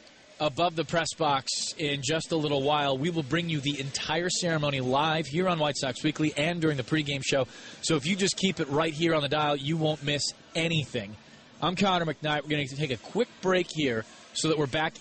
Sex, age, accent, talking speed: male, 30-49, American, 230 wpm